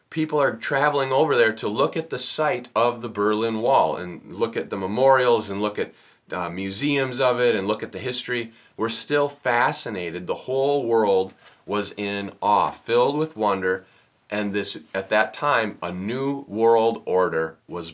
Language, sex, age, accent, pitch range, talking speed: English, male, 30-49, American, 100-125 Hz, 175 wpm